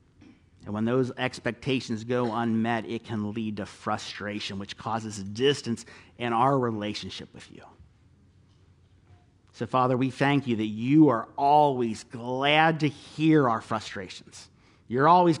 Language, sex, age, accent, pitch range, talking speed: English, male, 50-69, American, 100-130 Hz, 140 wpm